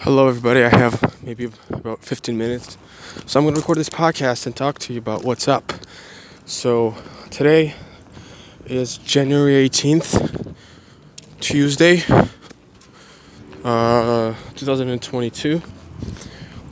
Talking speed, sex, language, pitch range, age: 105 wpm, male, English, 120-135 Hz, 20-39